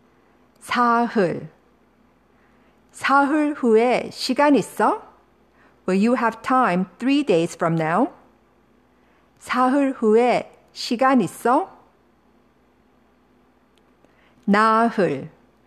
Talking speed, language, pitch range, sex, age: 70 wpm, English, 165-245 Hz, female, 50-69